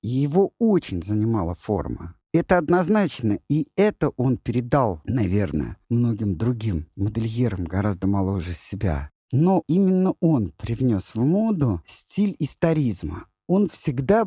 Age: 50-69